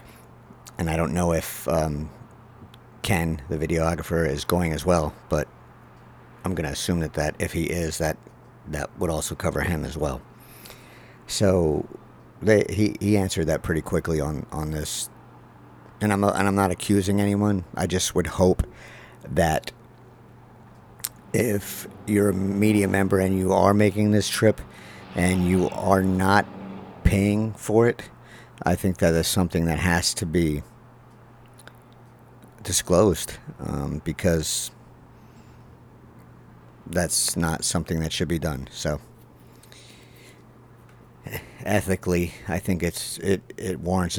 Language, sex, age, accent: English, male, 50-69, American